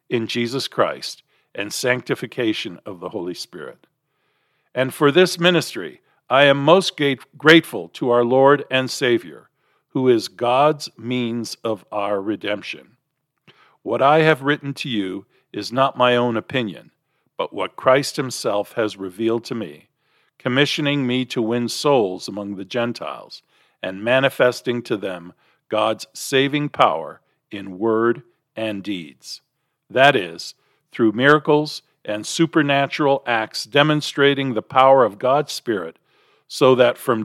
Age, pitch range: 50-69, 120-150 Hz